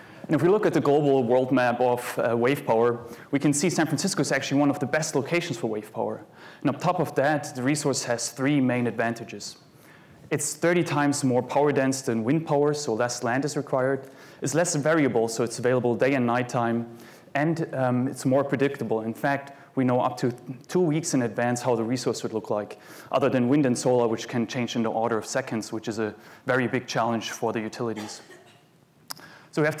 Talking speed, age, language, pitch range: 215 wpm, 20-39, English, 120-140 Hz